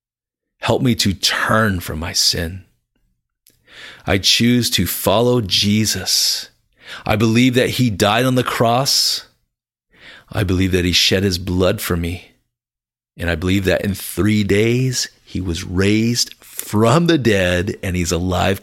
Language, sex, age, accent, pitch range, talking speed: English, male, 40-59, American, 90-120 Hz, 145 wpm